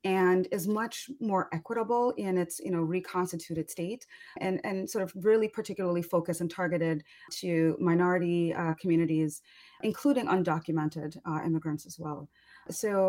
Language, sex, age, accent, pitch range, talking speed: English, female, 30-49, American, 170-210 Hz, 140 wpm